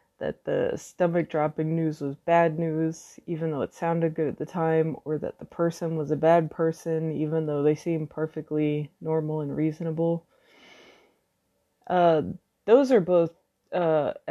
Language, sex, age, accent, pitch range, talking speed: English, female, 20-39, American, 155-175 Hz, 150 wpm